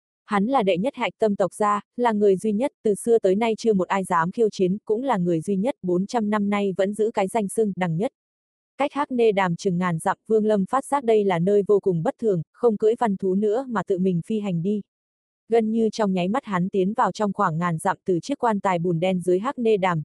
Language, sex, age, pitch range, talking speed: Vietnamese, female, 20-39, 185-220 Hz, 265 wpm